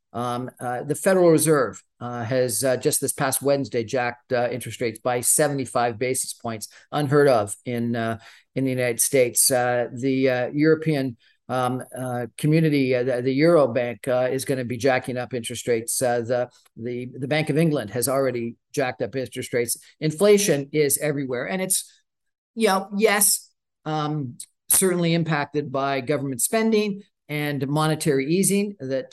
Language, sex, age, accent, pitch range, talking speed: English, male, 50-69, American, 125-160 Hz, 165 wpm